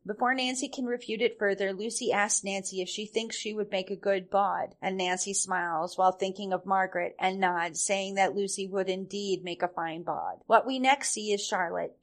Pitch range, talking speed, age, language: 185-215 Hz, 210 wpm, 30-49, English